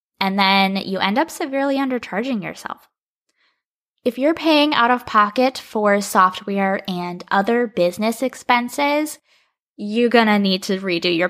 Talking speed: 140 wpm